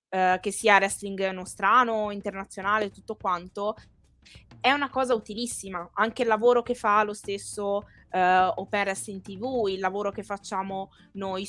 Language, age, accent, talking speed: Italian, 20-39, native, 145 wpm